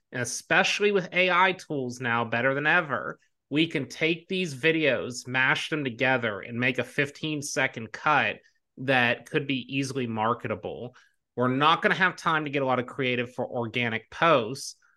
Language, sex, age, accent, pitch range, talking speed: English, male, 30-49, American, 120-155 Hz, 170 wpm